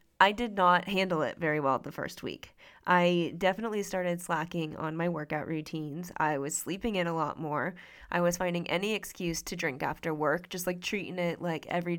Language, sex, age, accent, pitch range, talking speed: English, female, 20-39, American, 170-190 Hz, 200 wpm